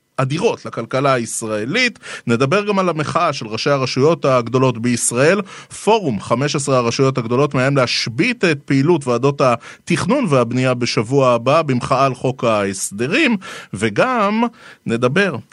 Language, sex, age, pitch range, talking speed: Hebrew, male, 30-49, 120-150 Hz, 120 wpm